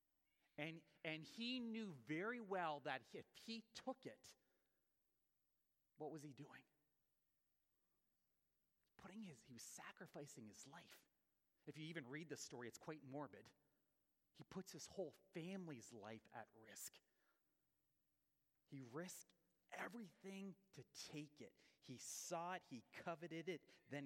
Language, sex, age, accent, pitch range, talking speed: English, male, 30-49, American, 145-190 Hz, 130 wpm